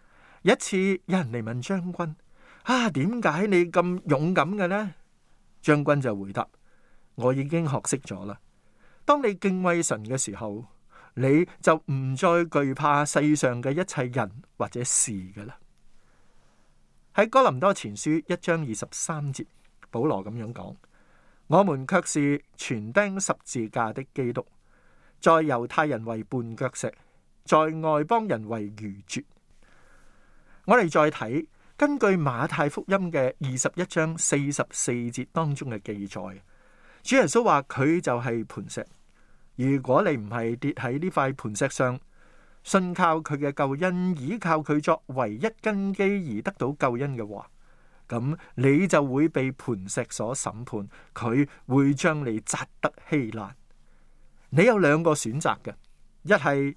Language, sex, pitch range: Chinese, male, 110-165 Hz